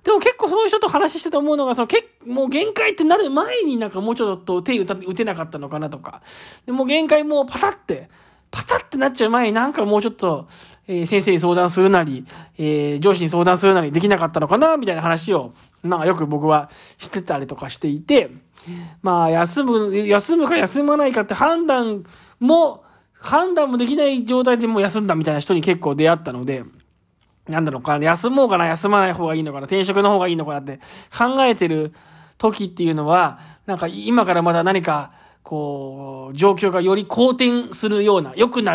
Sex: male